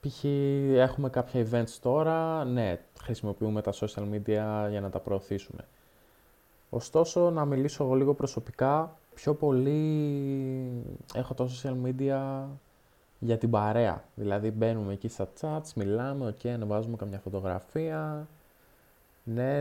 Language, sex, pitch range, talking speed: Greek, male, 110-150 Hz, 130 wpm